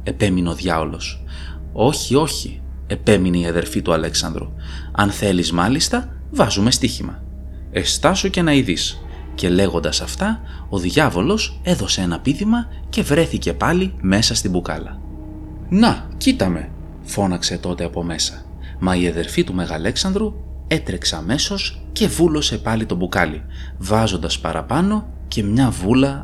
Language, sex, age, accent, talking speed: Greek, male, 30-49, native, 130 wpm